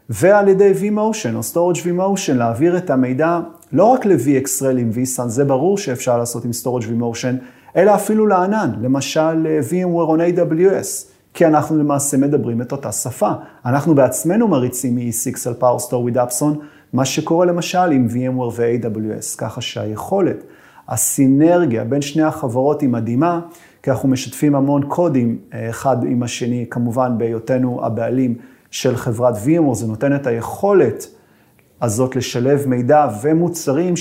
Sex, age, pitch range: male, 30-49, 120-150 Hz